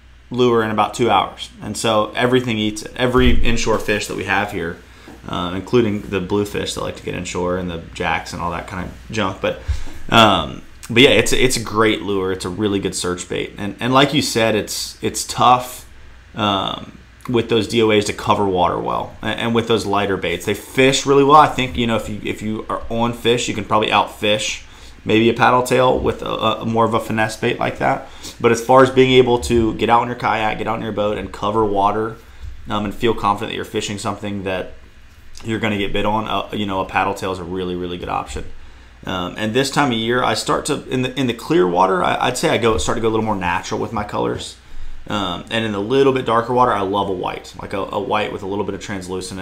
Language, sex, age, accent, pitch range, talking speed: English, male, 30-49, American, 90-115 Hz, 245 wpm